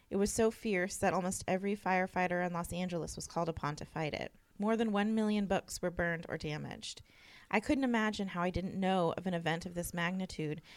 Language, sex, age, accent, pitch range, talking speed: English, female, 20-39, American, 165-190 Hz, 215 wpm